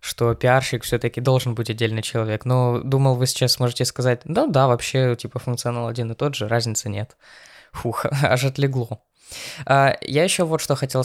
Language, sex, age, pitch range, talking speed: Russian, female, 20-39, 120-140 Hz, 170 wpm